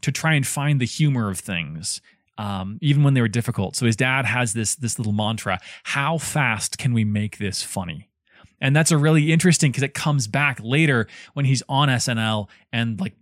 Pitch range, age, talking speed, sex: 110-150 Hz, 20-39, 205 wpm, male